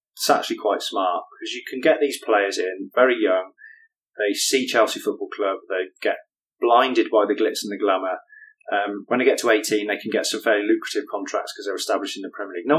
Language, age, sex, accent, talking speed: English, 30-49, male, British, 225 wpm